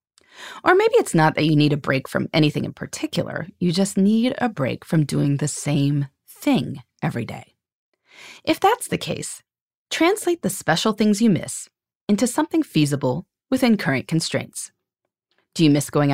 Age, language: 30-49, English